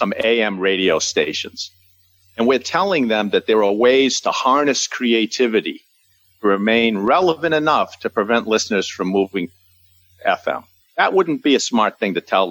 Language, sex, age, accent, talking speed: English, male, 50-69, American, 165 wpm